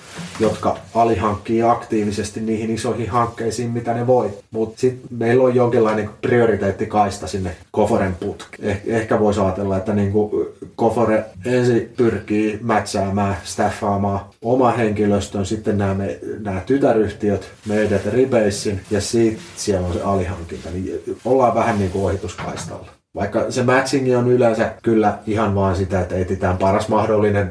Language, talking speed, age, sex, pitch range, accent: Finnish, 135 wpm, 30-49, male, 100-115 Hz, native